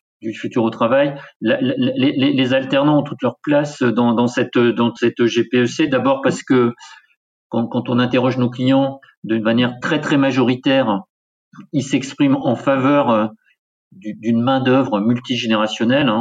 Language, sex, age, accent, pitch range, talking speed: French, male, 50-69, French, 115-135 Hz, 150 wpm